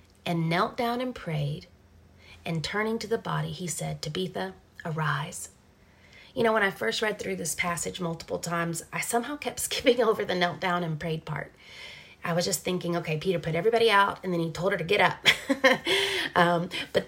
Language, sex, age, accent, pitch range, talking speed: English, female, 30-49, American, 165-205 Hz, 195 wpm